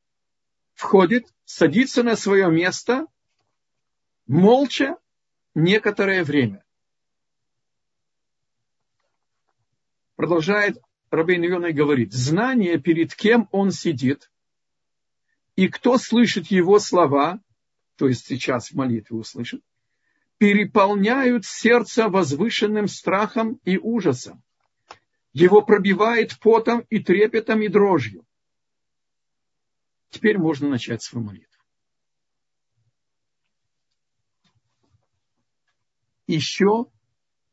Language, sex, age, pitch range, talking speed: Russian, male, 50-69, 130-210 Hz, 75 wpm